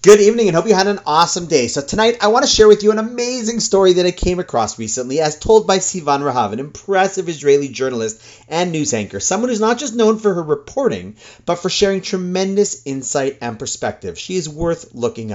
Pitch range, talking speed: 140-210 Hz, 220 wpm